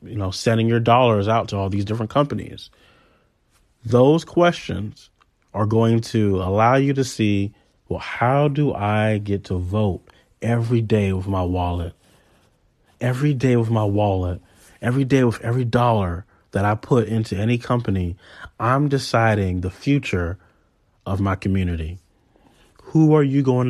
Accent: American